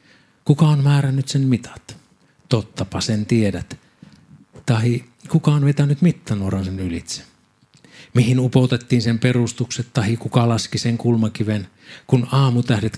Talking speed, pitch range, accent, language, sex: 120 wpm, 105-125 Hz, native, Finnish, male